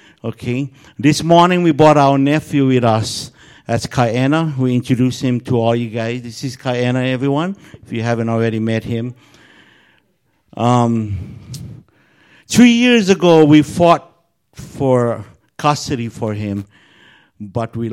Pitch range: 110-135 Hz